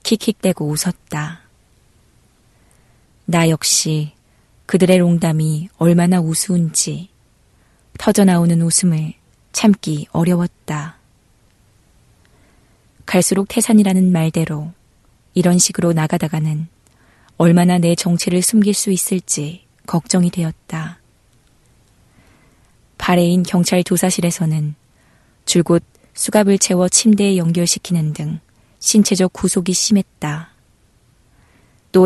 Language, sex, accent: Korean, female, native